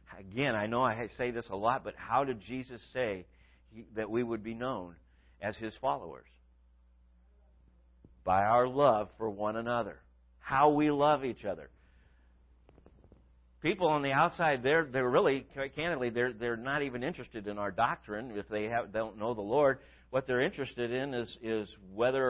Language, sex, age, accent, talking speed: English, male, 50-69, American, 170 wpm